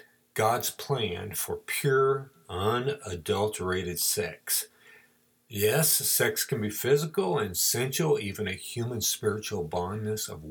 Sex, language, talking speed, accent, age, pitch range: male, English, 110 wpm, American, 50-69, 90-120 Hz